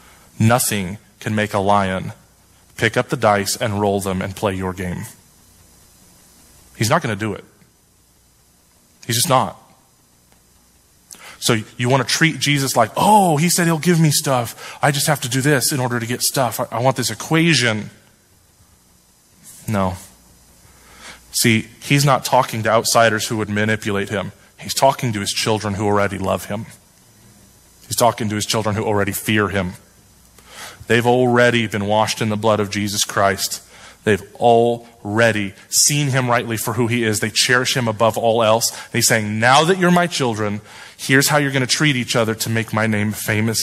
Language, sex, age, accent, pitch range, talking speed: English, male, 20-39, American, 100-125 Hz, 175 wpm